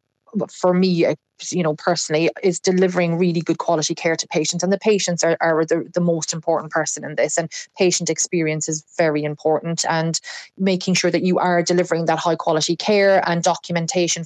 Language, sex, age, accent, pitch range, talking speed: English, female, 30-49, Irish, 165-185 Hz, 185 wpm